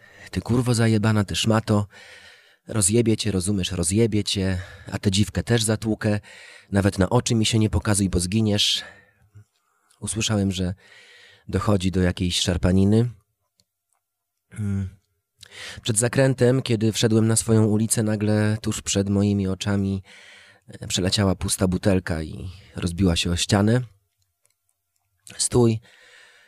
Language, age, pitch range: Polish, 30-49, 95-110 Hz